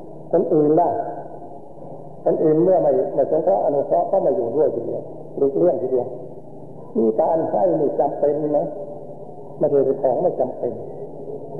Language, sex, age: Thai, male, 60-79